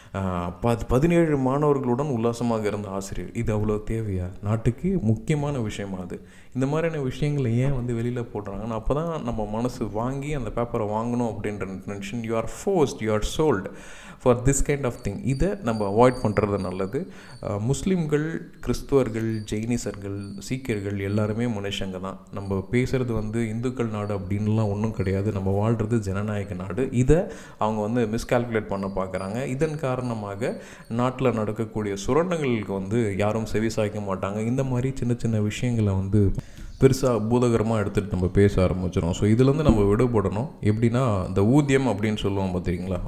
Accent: native